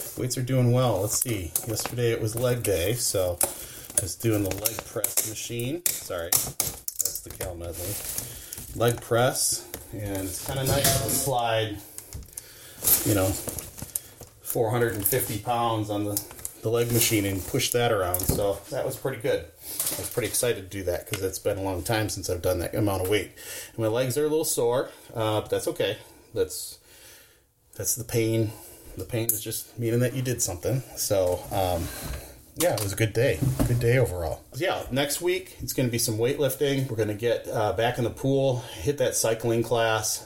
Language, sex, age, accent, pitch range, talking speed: English, male, 30-49, American, 100-120 Hz, 190 wpm